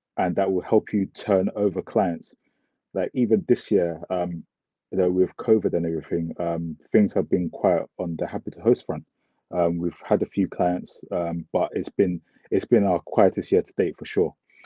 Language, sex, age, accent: English, male, 20-39, British